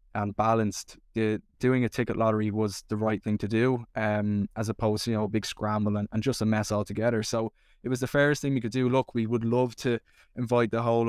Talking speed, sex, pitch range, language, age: 245 wpm, male, 105-120 Hz, English, 10-29